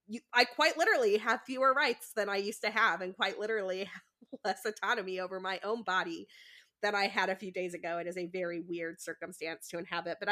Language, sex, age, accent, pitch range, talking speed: English, female, 20-39, American, 185-220 Hz, 220 wpm